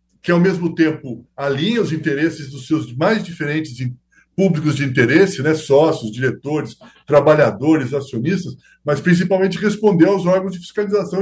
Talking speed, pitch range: 140 wpm, 145-180 Hz